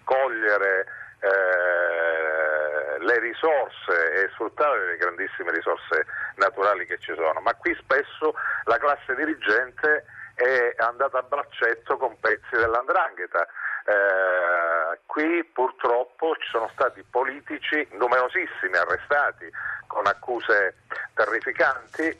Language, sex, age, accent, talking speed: Italian, male, 40-59, native, 100 wpm